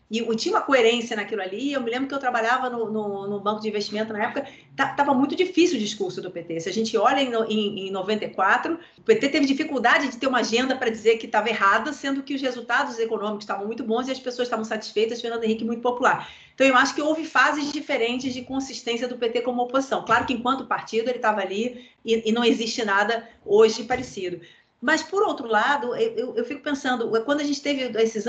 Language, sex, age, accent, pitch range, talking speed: Portuguese, female, 40-59, Brazilian, 220-280 Hz, 225 wpm